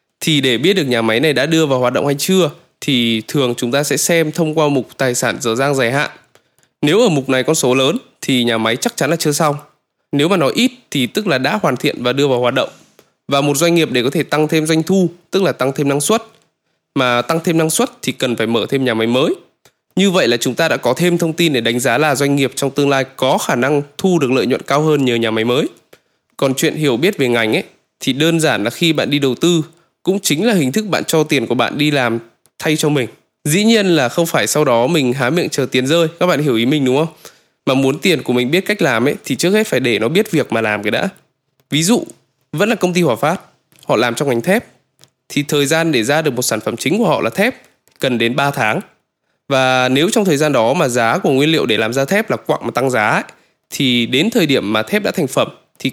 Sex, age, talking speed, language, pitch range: male, 20-39, 275 wpm, Vietnamese, 130-165 Hz